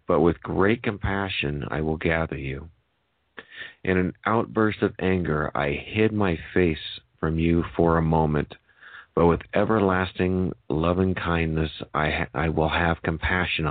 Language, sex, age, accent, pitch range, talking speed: English, male, 40-59, American, 80-90 Hz, 150 wpm